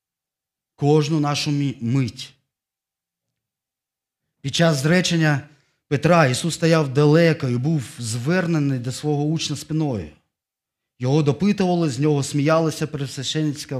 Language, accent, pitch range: Ukrainian, native, 120-155 Hz